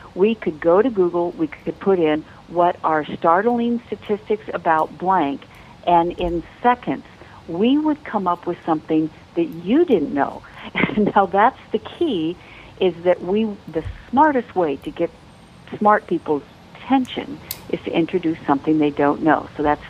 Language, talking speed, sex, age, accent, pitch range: English, 160 wpm, female, 60-79, American, 160-205 Hz